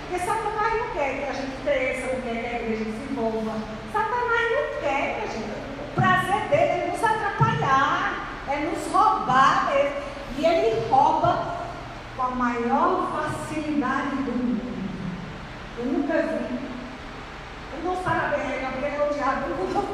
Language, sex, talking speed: Portuguese, female, 150 wpm